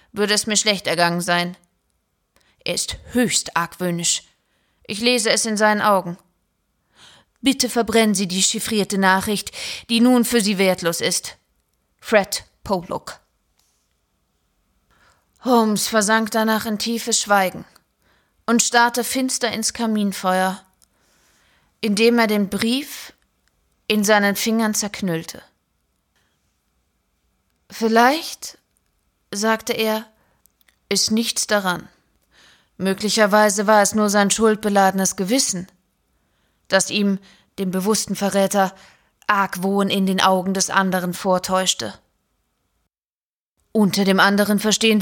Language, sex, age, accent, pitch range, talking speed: German, female, 30-49, German, 185-225 Hz, 105 wpm